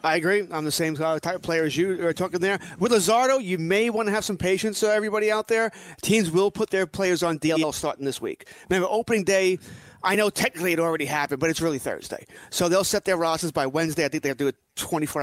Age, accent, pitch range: 30-49, American, 150-190 Hz